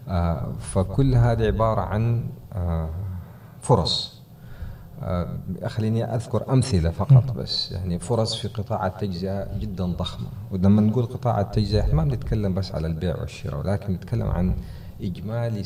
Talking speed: 135 wpm